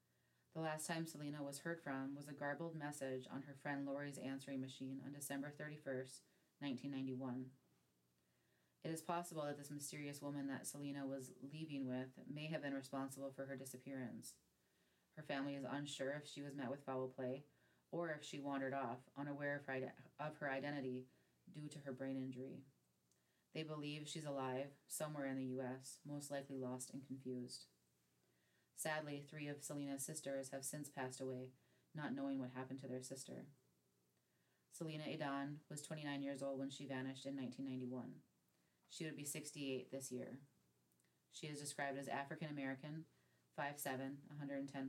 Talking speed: 160 wpm